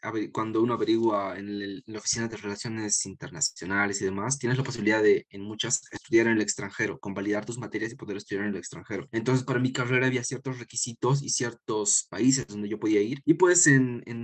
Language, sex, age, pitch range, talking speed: Spanish, male, 20-39, 100-130 Hz, 210 wpm